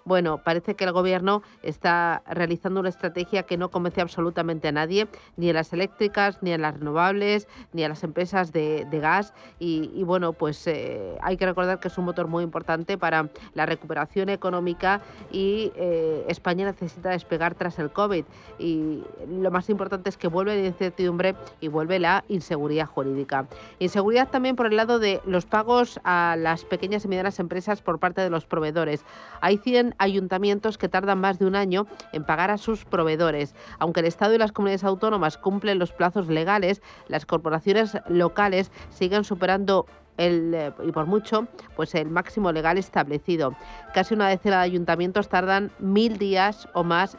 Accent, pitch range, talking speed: Spanish, 165-195 Hz, 175 wpm